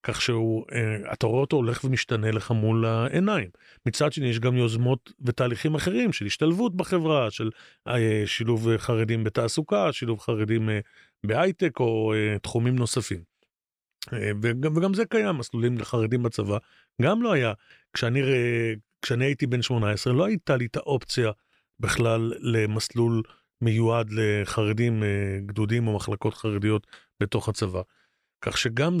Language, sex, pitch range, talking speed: Hebrew, male, 110-135 Hz, 130 wpm